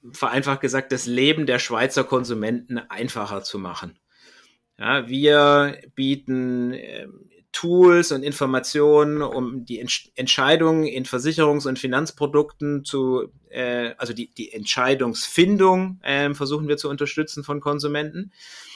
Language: German